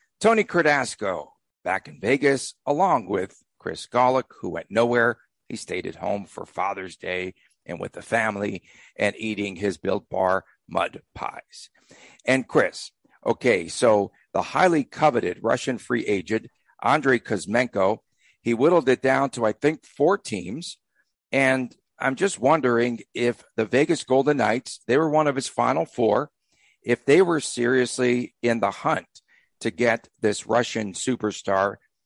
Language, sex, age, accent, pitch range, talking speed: English, male, 50-69, American, 110-130 Hz, 150 wpm